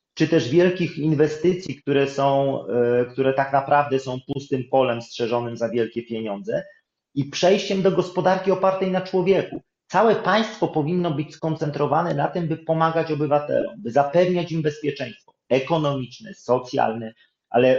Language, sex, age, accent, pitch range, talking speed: Polish, male, 30-49, native, 135-180 Hz, 135 wpm